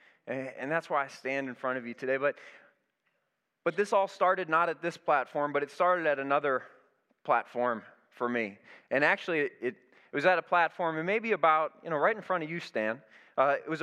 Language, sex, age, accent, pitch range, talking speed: English, male, 20-39, American, 135-165 Hz, 215 wpm